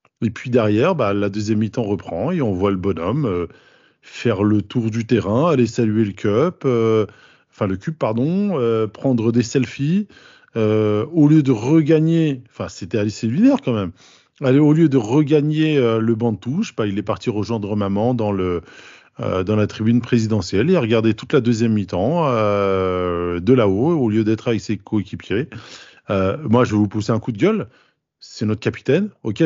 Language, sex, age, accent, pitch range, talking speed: French, male, 20-39, French, 100-130 Hz, 190 wpm